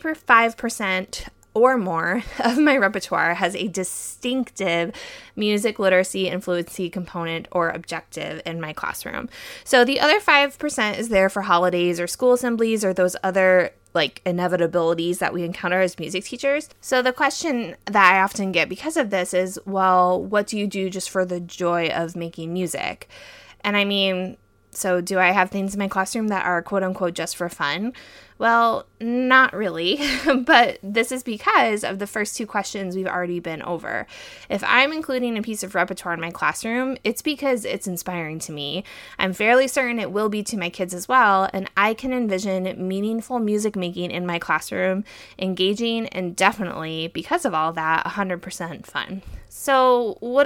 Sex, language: female, English